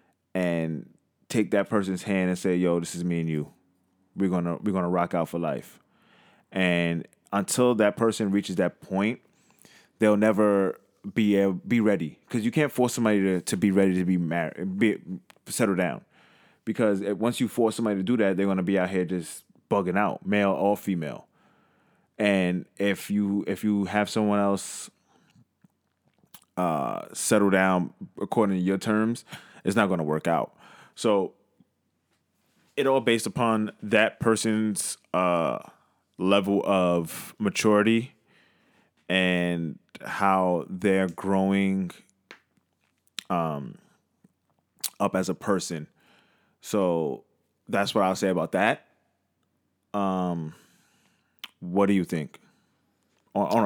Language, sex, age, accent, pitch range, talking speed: English, male, 20-39, American, 90-105 Hz, 140 wpm